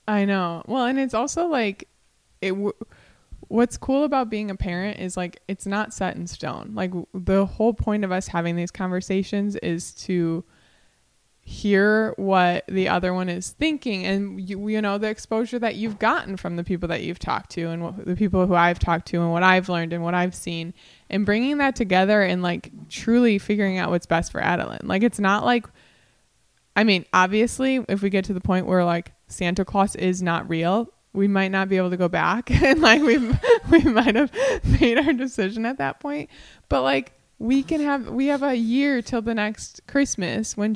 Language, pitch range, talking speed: English, 180-230 Hz, 205 wpm